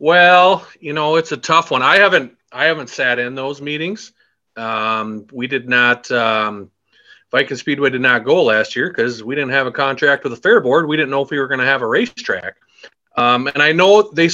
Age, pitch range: 30-49, 125-185 Hz